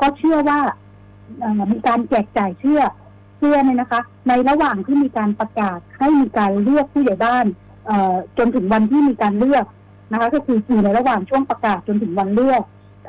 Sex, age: female, 60-79